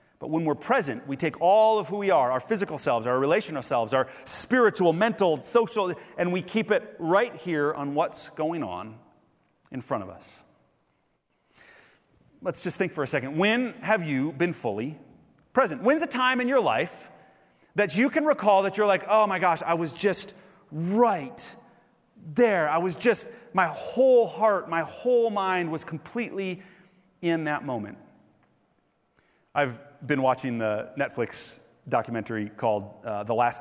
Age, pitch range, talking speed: 30-49, 145-215 Hz, 165 wpm